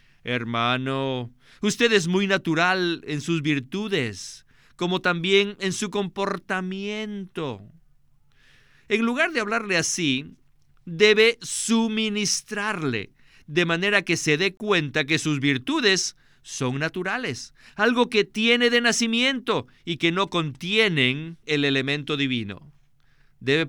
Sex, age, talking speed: male, 50-69, 110 wpm